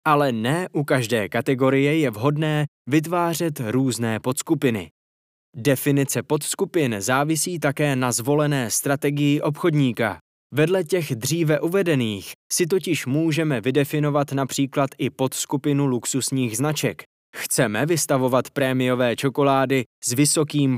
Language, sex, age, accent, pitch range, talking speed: Czech, male, 20-39, native, 125-155 Hz, 105 wpm